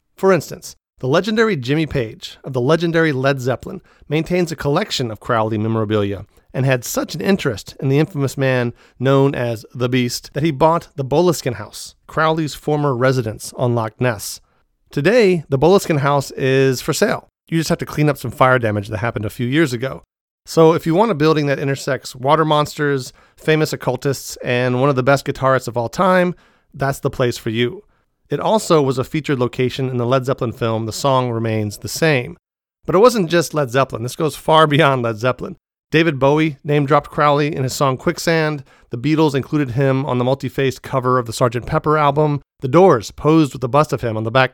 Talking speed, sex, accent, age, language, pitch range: 200 wpm, male, American, 40-59, English, 120-155 Hz